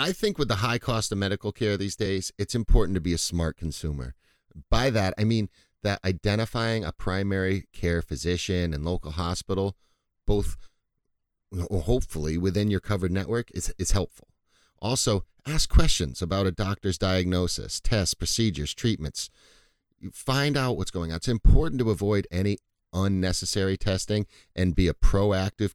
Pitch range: 85-105 Hz